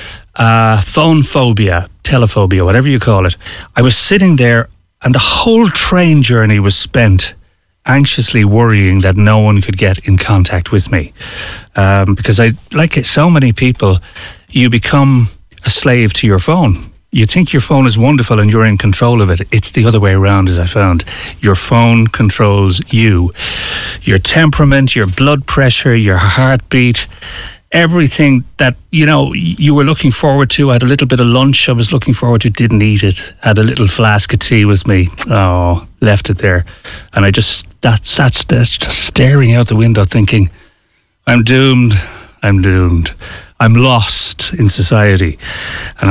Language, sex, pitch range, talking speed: English, male, 95-125 Hz, 175 wpm